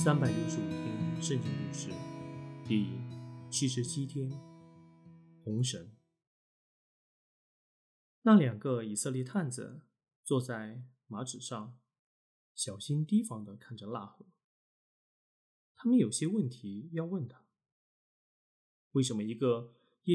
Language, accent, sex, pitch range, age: Chinese, native, male, 120-160 Hz, 20-39